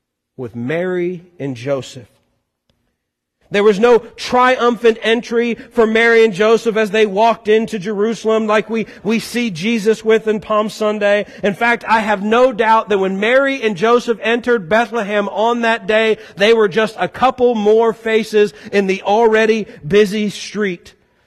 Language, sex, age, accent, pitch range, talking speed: English, male, 40-59, American, 185-235 Hz, 155 wpm